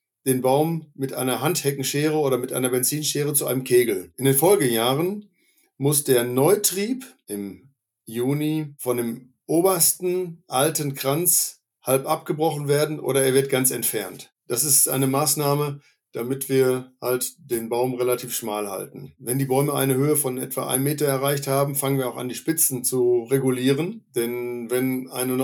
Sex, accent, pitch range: male, German, 125-150 Hz